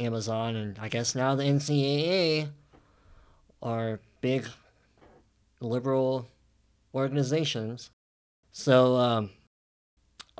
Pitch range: 110-145 Hz